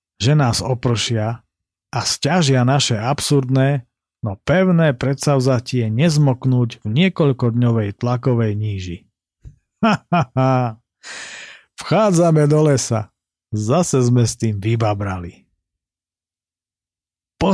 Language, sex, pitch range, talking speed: Slovak, male, 110-140 Hz, 90 wpm